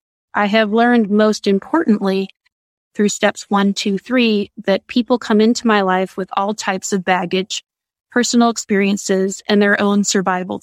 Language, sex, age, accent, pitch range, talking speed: English, female, 20-39, American, 190-215 Hz, 150 wpm